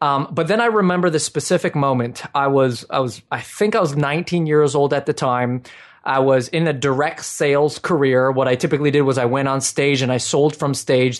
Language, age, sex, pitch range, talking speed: English, 20-39, male, 135-170 Hz, 230 wpm